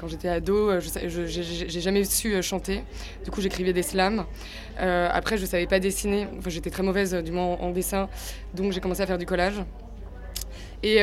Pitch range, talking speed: 170-190 Hz, 205 wpm